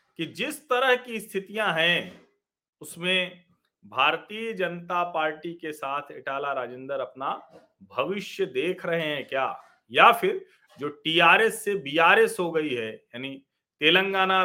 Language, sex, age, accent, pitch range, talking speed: Hindi, male, 40-59, native, 145-190 Hz, 130 wpm